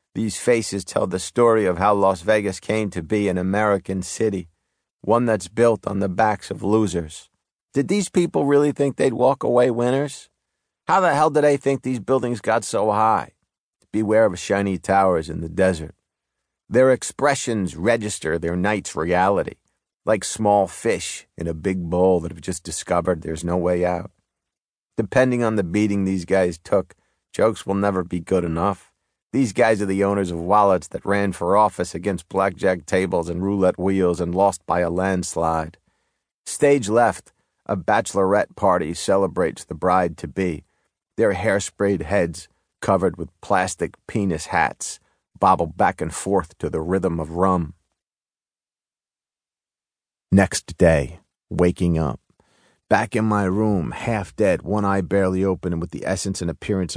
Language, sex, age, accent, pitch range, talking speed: English, male, 50-69, American, 90-110 Hz, 160 wpm